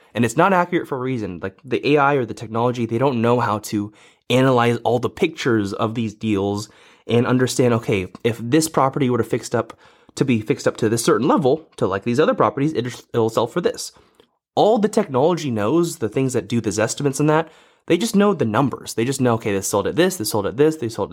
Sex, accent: male, American